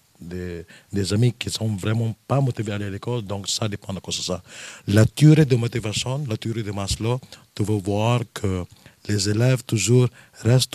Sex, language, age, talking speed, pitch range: male, French, 50-69, 195 wpm, 100-125 Hz